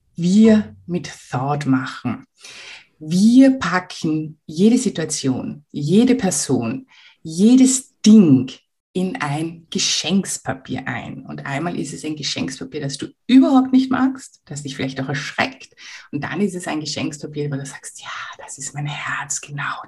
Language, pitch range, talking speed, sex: German, 145-200 Hz, 140 wpm, female